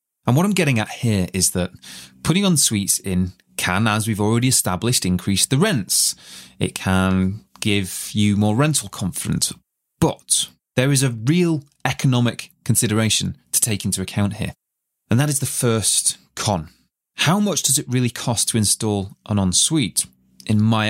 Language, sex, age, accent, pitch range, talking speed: English, male, 30-49, British, 100-135 Hz, 165 wpm